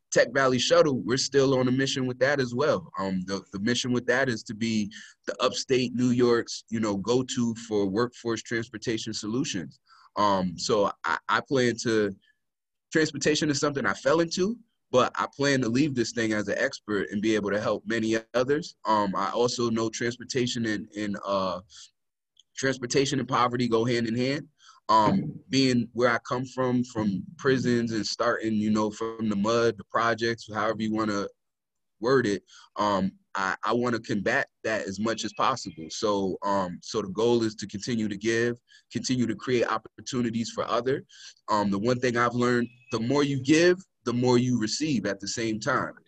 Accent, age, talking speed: American, 20-39, 185 wpm